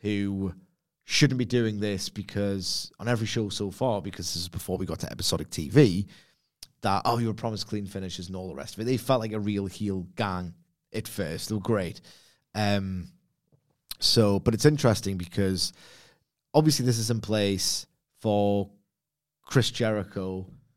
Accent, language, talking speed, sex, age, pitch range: British, English, 170 wpm, male, 30-49, 95-120 Hz